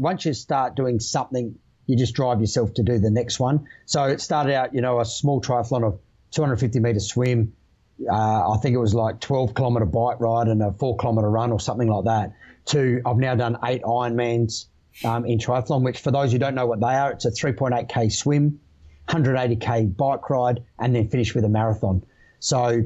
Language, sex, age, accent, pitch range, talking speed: English, male, 30-49, Australian, 115-135 Hz, 195 wpm